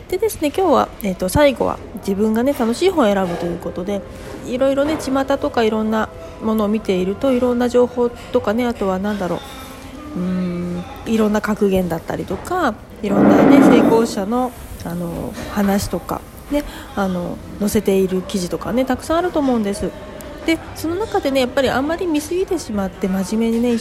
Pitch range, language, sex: 195-260 Hz, Japanese, female